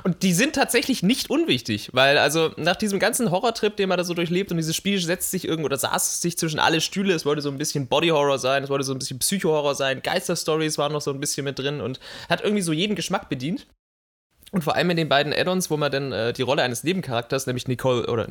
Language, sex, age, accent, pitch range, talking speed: German, male, 20-39, German, 140-185 Hz, 255 wpm